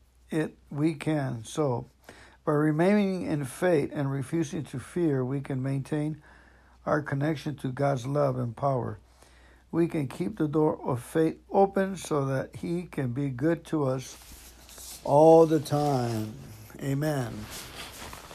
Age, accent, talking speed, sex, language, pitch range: 60-79, American, 135 wpm, male, English, 120-160 Hz